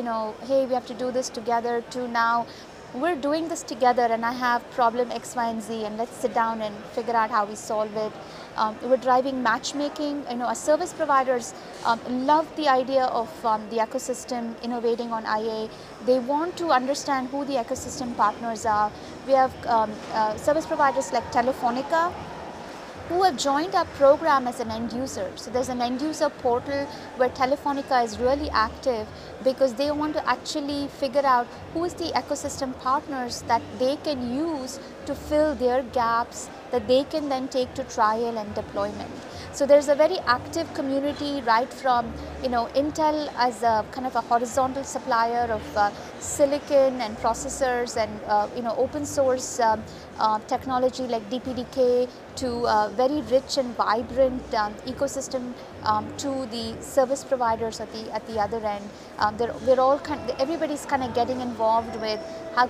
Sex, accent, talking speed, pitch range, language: female, Indian, 175 wpm, 230-275 Hz, English